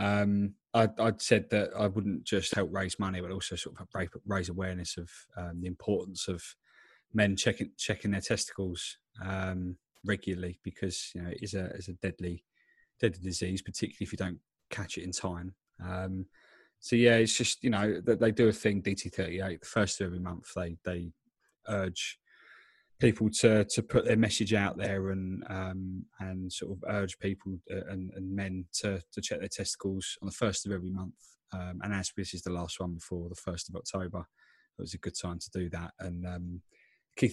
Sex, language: male, English